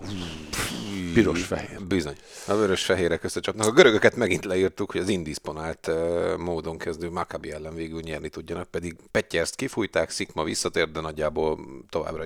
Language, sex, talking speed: Hungarian, male, 130 wpm